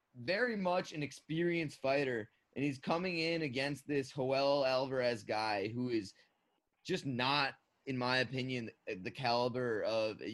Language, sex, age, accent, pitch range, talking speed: English, male, 20-39, American, 120-150 Hz, 145 wpm